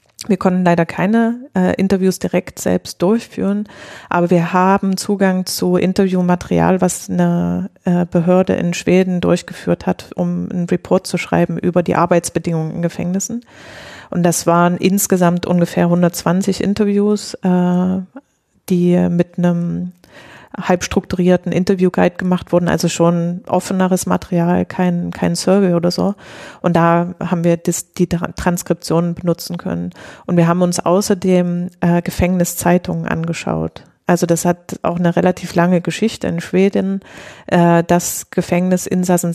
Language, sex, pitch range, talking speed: German, female, 170-185 Hz, 135 wpm